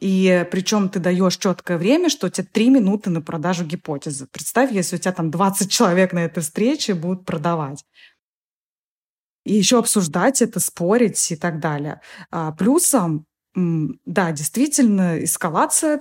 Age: 20-39